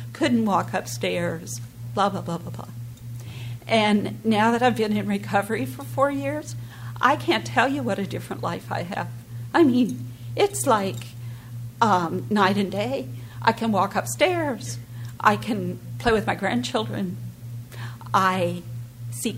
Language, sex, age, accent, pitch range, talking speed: English, female, 50-69, American, 120-190 Hz, 150 wpm